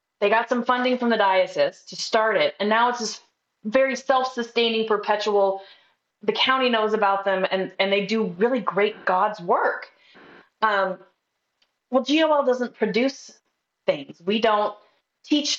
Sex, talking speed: female, 145 wpm